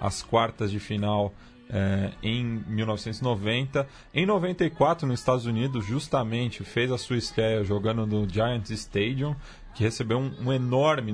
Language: Portuguese